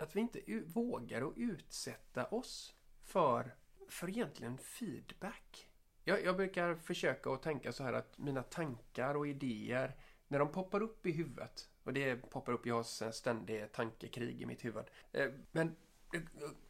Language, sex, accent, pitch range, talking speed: Swedish, male, native, 125-180 Hz, 160 wpm